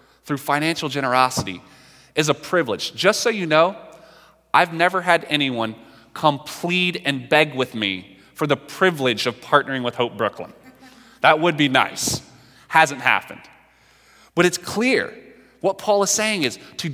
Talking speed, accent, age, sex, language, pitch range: 150 wpm, American, 30-49, male, English, 140-205 Hz